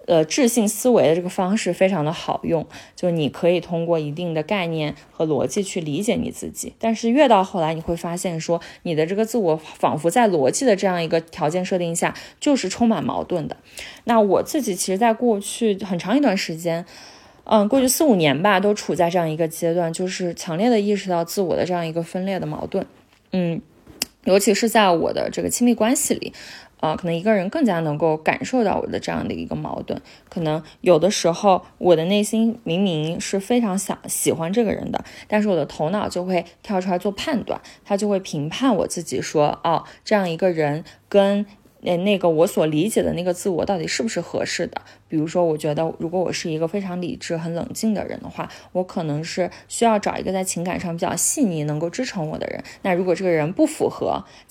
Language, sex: Chinese, female